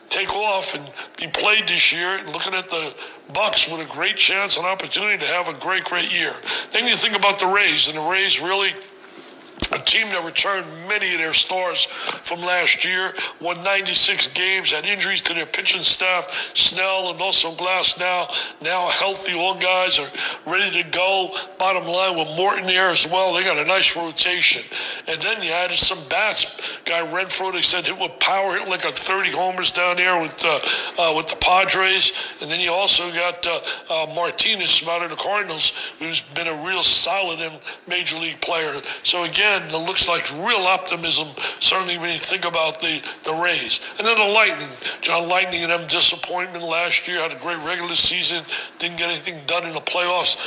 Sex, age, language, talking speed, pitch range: male, 60-79, English, 195 wpm, 170-190 Hz